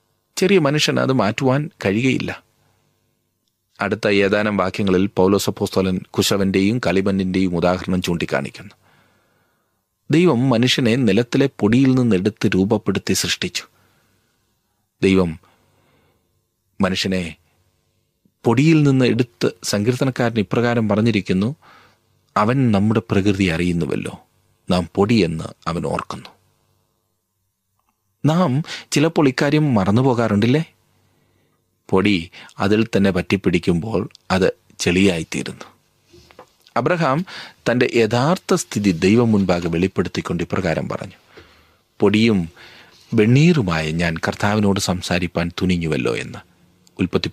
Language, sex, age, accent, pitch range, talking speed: Malayalam, male, 30-49, native, 95-120 Hz, 85 wpm